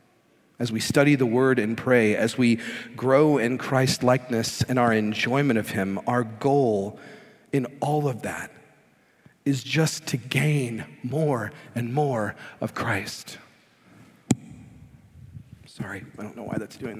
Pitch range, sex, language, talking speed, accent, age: 115-140 Hz, male, English, 140 wpm, American, 40-59